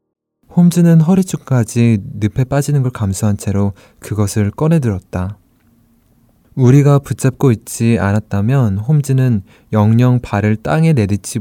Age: 20-39